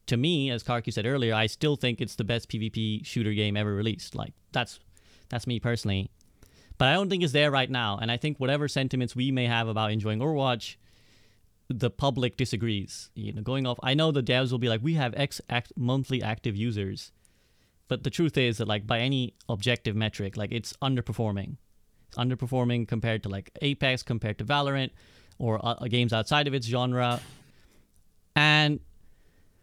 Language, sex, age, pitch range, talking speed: English, male, 30-49, 110-150 Hz, 185 wpm